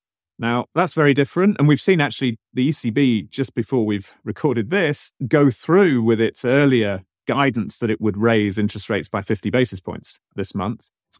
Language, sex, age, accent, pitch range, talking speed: English, male, 30-49, British, 100-130 Hz, 180 wpm